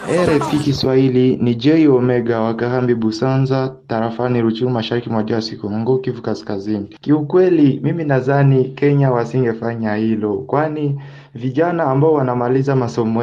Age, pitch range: 20-39, 120-150 Hz